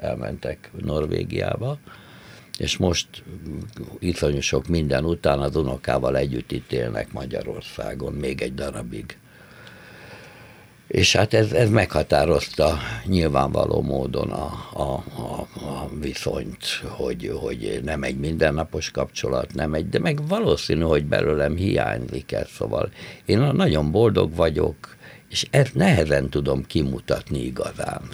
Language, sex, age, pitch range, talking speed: Hungarian, male, 60-79, 70-90 Hz, 115 wpm